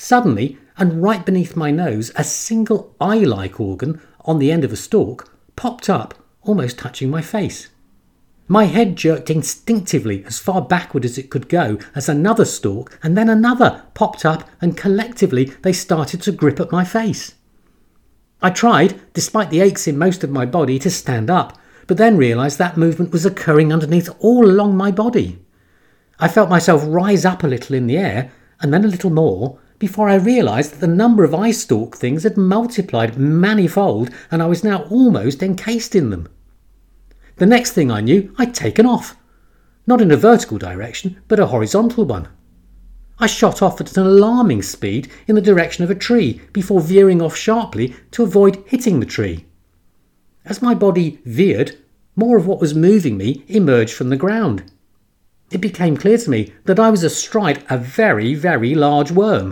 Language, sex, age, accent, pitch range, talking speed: English, male, 50-69, British, 130-205 Hz, 180 wpm